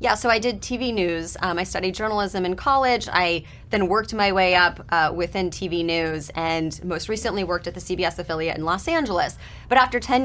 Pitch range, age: 180-225 Hz, 20-39